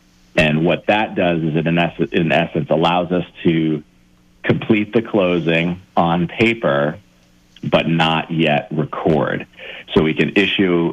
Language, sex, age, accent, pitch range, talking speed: English, male, 40-59, American, 75-90 Hz, 130 wpm